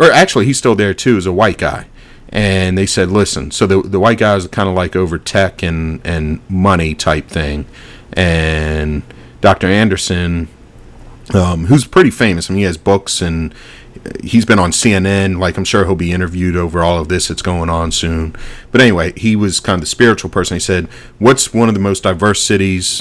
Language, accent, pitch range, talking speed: English, American, 80-100 Hz, 210 wpm